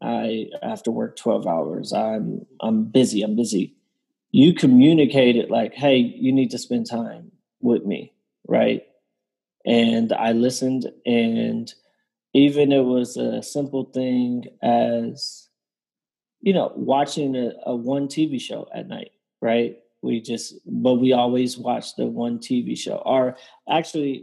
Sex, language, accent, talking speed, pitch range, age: male, English, American, 145 wpm, 125-150 Hz, 20-39